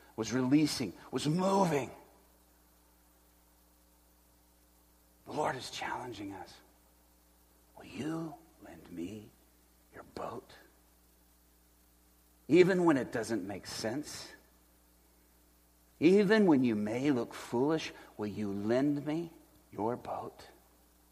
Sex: male